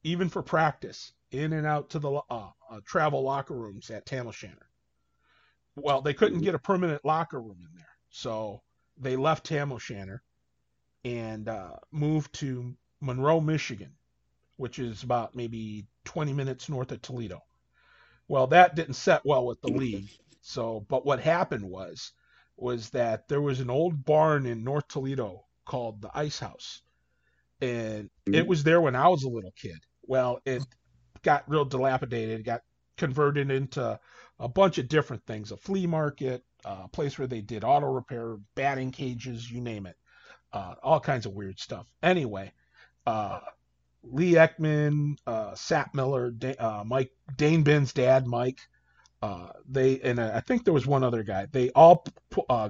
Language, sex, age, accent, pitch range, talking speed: English, male, 40-59, American, 115-150 Hz, 160 wpm